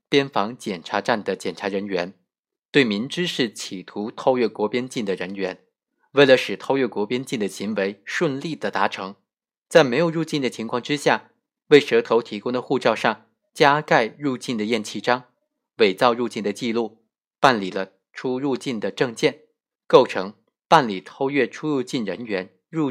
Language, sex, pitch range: Chinese, male, 105-150 Hz